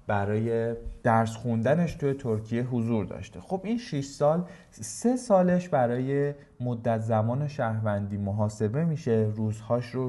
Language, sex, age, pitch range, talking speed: Persian, male, 20-39, 110-155 Hz, 125 wpm